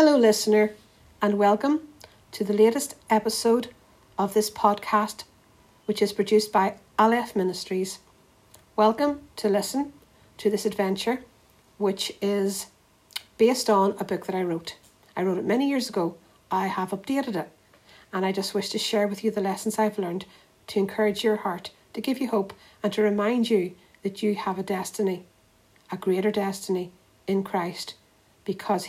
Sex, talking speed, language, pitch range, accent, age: female, 160 wpm, English, 185-215 Hz, Irish, 60-79